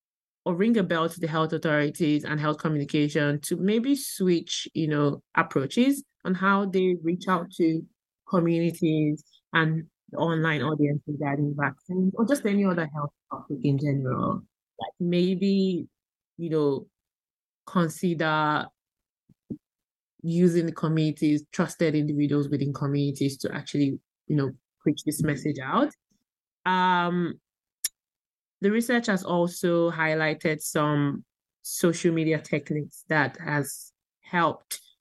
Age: 20-39